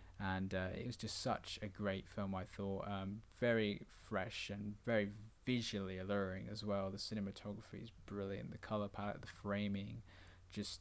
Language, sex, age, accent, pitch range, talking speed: English, male, 20-39, British, 95-110 Hz, 165 wpm